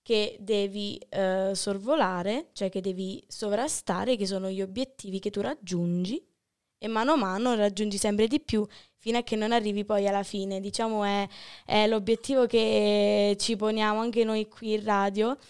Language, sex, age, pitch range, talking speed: Italian, female, 20-39, 200-235 Hz, 165 wpm